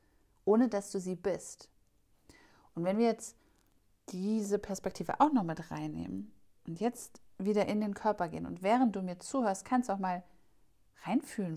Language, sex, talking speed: German, female, 165 wpm